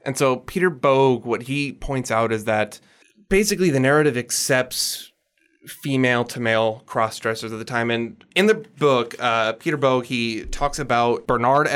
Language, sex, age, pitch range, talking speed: English, male, 20-39, 110-130 Hz, 155 wpm